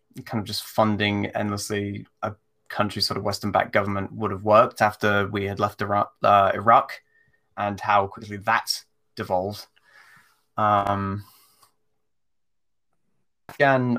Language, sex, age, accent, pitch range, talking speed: English, male, 20-39, British, 100-115 Hz, 120 wpm